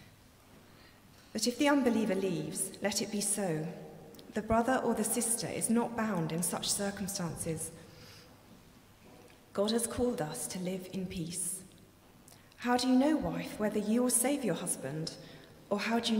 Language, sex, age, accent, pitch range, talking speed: English, female, 30-49, British, 165-220 Hz, 160 wpm